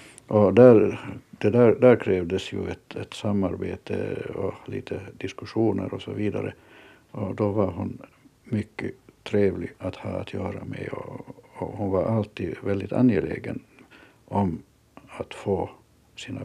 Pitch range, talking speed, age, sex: 100-115 Hz, 140 wpm, 60-79, male